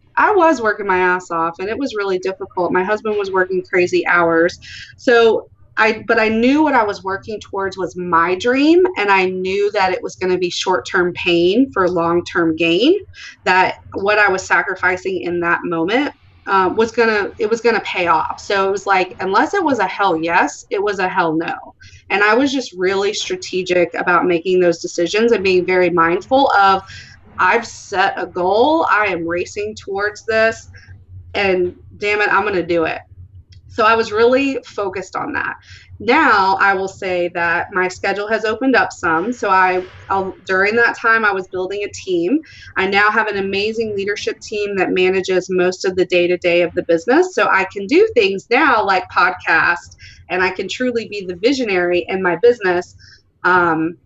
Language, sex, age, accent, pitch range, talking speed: English, female, 30-49, American, 180-220 Hz, 195 wpm